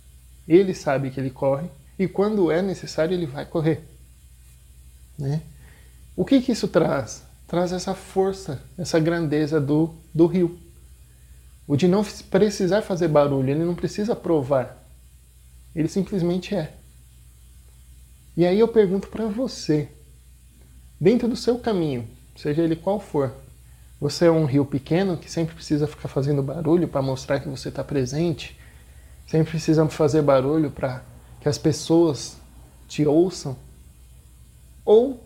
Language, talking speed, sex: Portuguese, 140 wpm, male